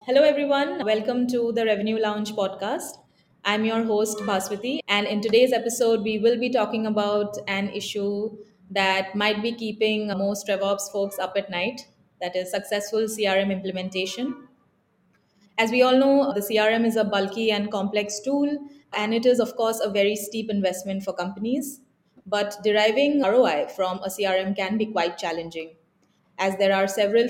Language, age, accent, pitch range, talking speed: English, 20-39, Indian, 190-220 Hz, 165 wpm